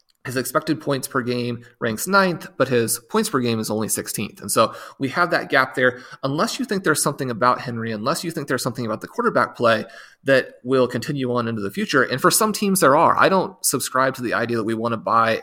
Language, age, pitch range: English, 30-49, 115-135 Hz